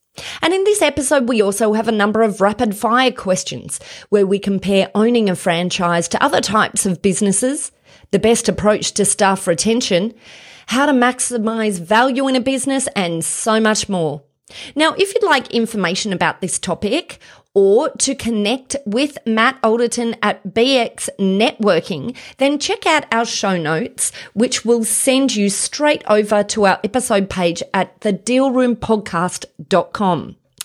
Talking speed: 150 wpm